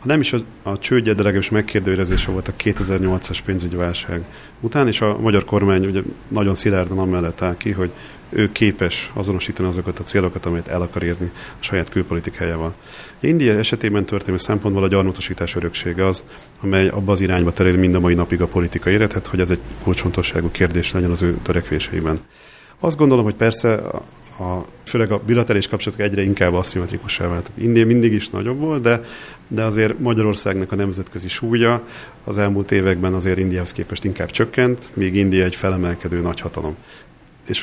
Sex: male